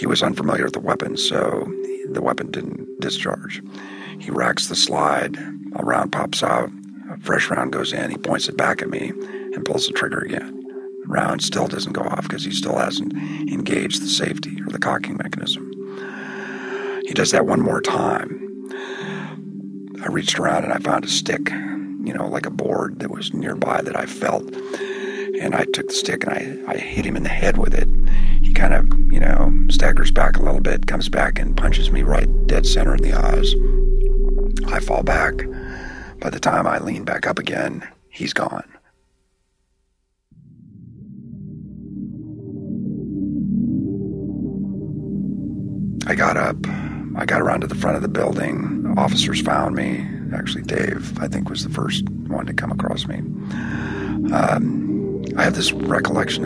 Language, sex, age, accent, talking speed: English, male, 50-69, American, 165 wpm